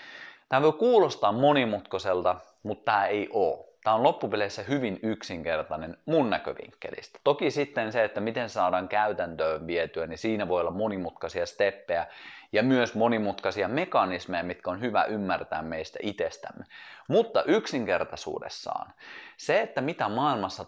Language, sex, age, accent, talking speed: Finnish, male, 30-49, native, 130 wpm